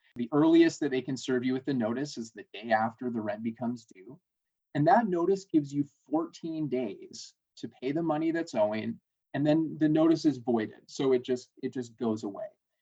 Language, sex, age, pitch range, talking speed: English, male, 30-49, 120-150 Hz, 205 wpm